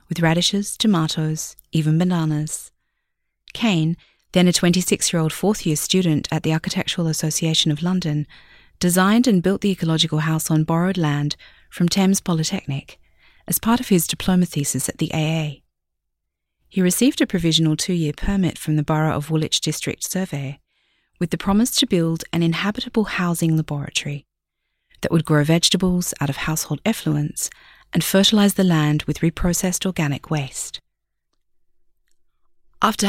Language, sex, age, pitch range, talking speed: English, female, 30-49, 155-185 Hz, 140 wpm